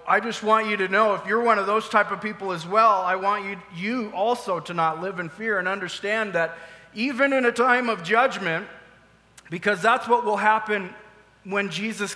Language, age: English, 30-49